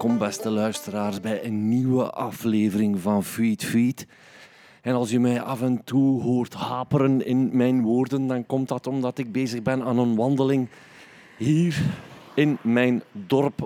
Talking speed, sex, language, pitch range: 160 wpm, male, Dutch, 120-150 Hz